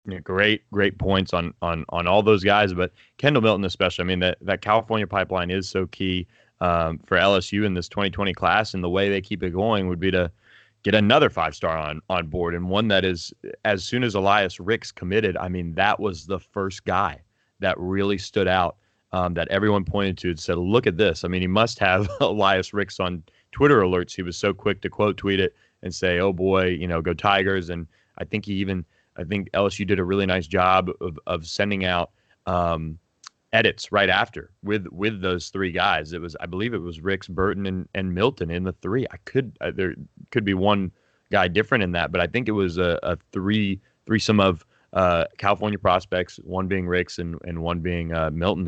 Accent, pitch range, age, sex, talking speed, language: American, 85-100 Hz, 30-49, male, 215 wpm, English